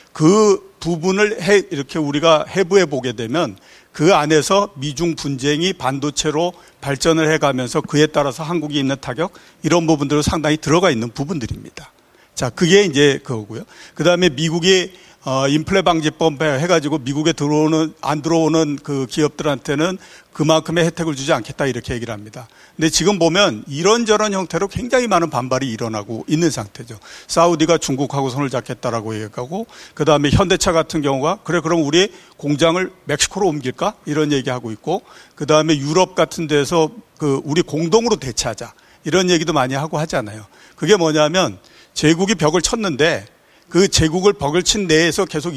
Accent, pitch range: native, 140-185 Hz